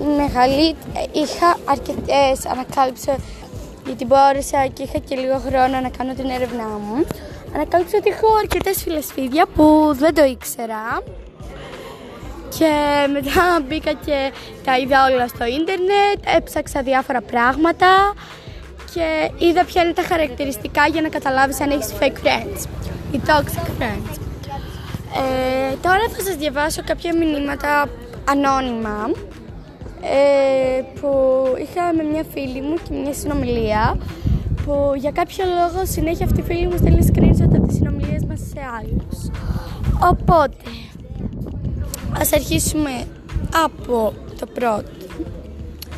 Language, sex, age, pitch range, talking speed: Greek, female, 20-39, 260-320 Hz, 120 wpm